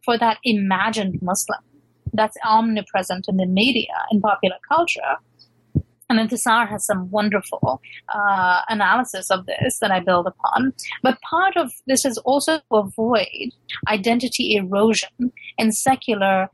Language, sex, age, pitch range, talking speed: English, female, 30-49, 205-255 Hz, 135 wpm